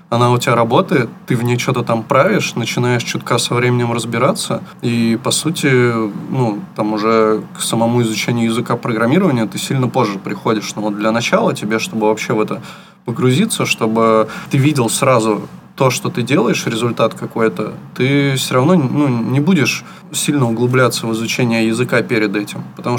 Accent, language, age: native, Russian, 20-39